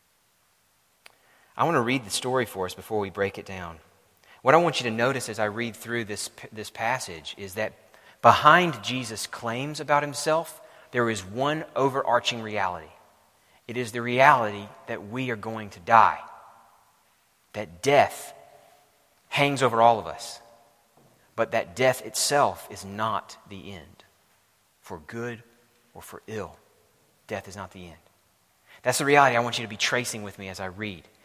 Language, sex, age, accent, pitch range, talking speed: English, male, 30-49, American, 110-140 Hz, 165 wpm